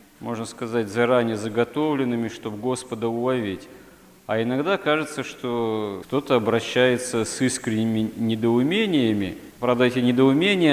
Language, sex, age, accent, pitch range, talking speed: Russian, male, 40-59, native, 115-135 Hz, 105 wpm